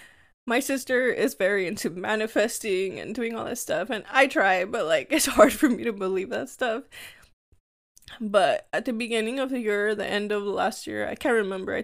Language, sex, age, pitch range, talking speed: English, female, 10-29, 200-270 Hz, 205 wpm